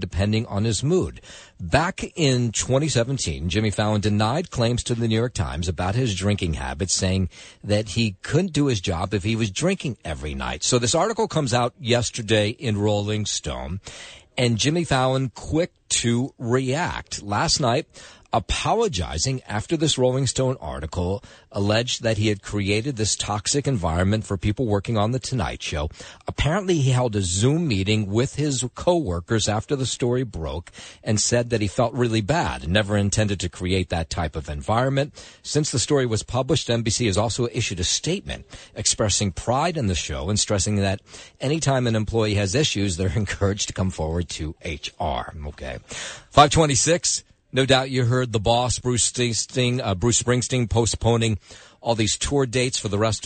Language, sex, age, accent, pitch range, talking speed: English, male, 50-69, American, 100-125 Hz, 170 wpm